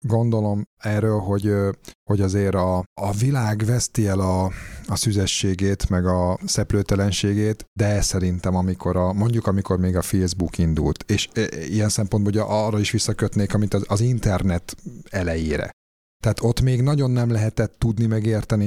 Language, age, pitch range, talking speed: Hungarian, 30-49, 95-110 Hz, 150 wpm